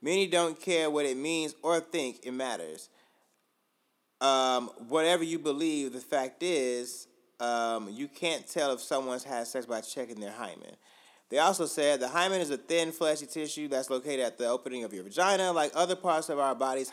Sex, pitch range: male, 125-160 Hz